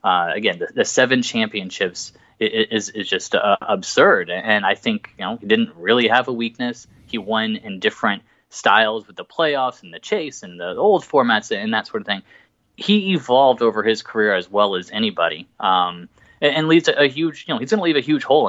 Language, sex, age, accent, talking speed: English, male, 20-39, American, 220 wpm